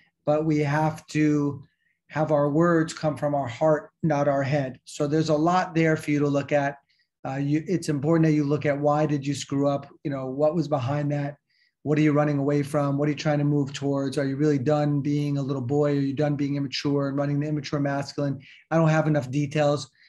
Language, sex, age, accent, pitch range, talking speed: English, male, 30-49, American, 140-155 Hz, 235 wpm